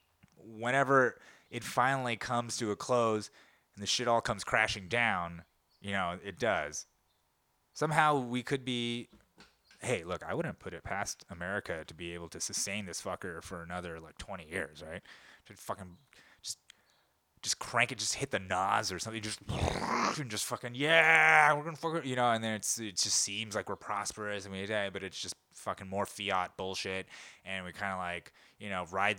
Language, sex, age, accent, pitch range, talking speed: English, male, 20-39, American, 95-125 Hz, 190 wpm